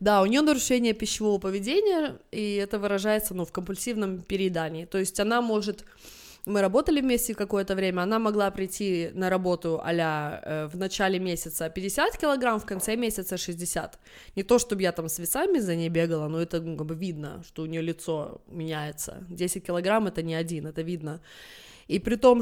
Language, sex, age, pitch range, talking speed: Russian, female, 20-39, 175-235 Hz, 185 wpm